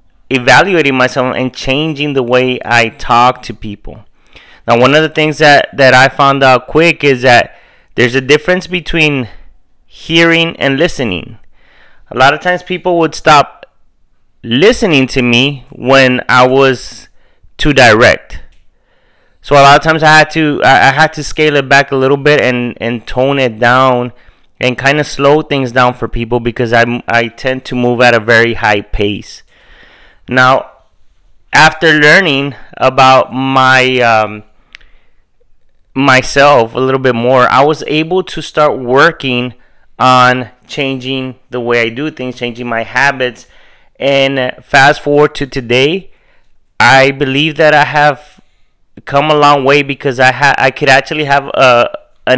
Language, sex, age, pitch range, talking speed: English, male, 30-49, 125-145 Hz, 155 wpm